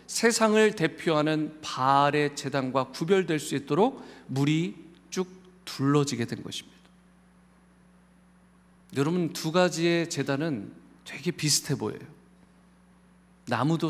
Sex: male